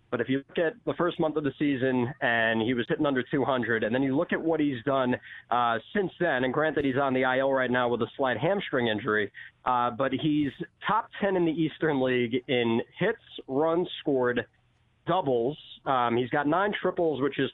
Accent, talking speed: American, 215 wpm